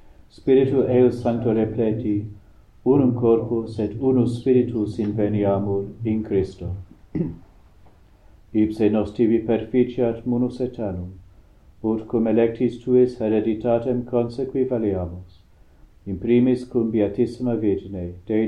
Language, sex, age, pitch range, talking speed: English, male, 50-69, 100-120 Hz, 90 wpm